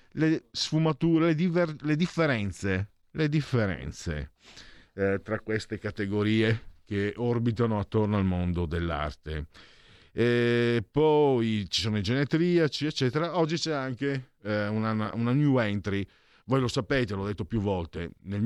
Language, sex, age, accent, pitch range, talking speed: Italian, male, 50-69, native, 90-120 Hz, 135 wpm